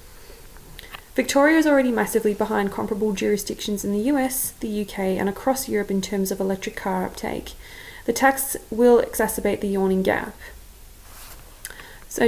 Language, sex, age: English, female, 20-39